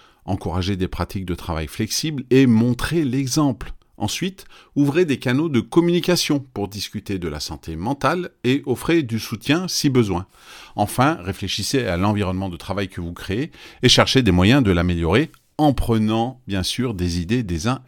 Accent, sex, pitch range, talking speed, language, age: French, male, 95-125 Hz, 170 wpm, French, 40-59